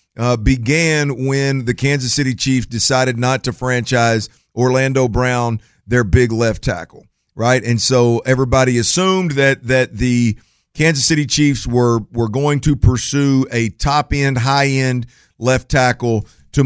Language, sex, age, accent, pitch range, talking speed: English, male, 50-69, American, 120-140 Hz, 140 wpm